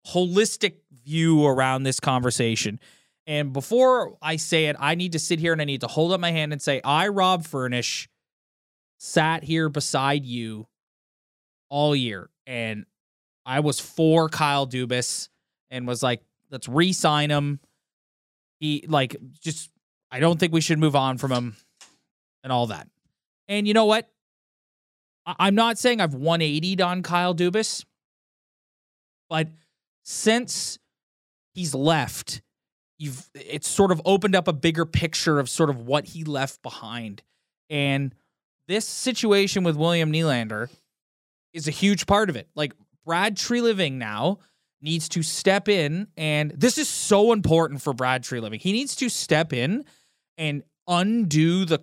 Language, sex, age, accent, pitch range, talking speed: English, male, 20-39, American, 135-180 Hz, 150 wpm